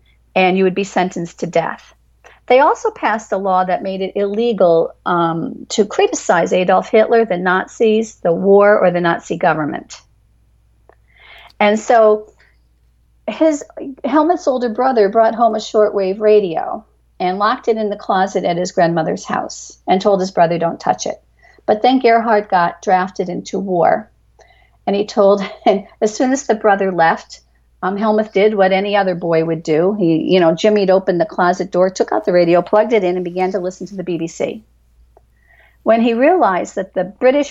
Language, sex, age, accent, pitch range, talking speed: English, female, 50-69, American, 180-220 Hz, 180 wpm